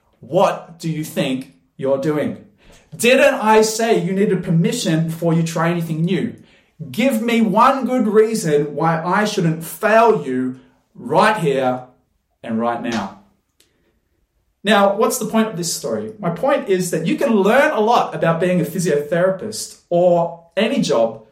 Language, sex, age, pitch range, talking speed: English, male, 30-49, 135-200 Hz, 155 wpm